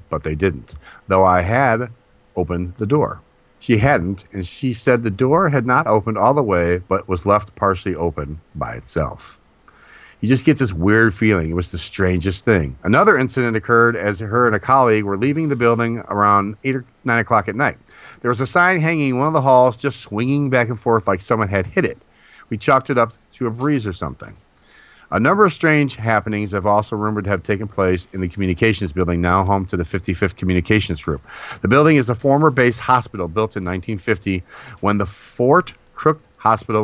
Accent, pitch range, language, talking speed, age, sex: American, 95-125 Hz, English, 205 wpm, 40-59, male